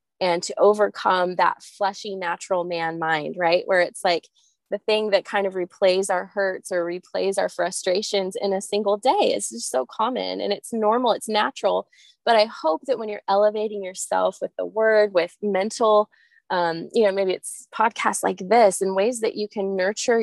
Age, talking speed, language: 20-39, 190 wpm, English